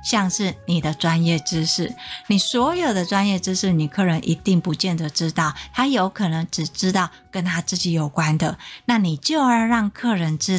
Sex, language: female, Chinese